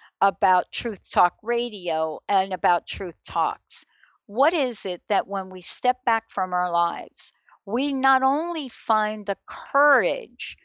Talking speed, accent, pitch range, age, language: 140 wpm, American, 180-235 Hz, 60-79, English